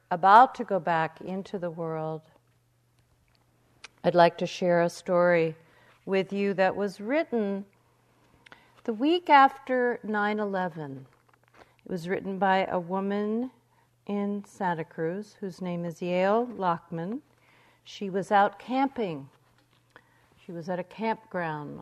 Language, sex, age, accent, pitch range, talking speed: English, female, 50-69, American, 160-220 Hz, 125 wpm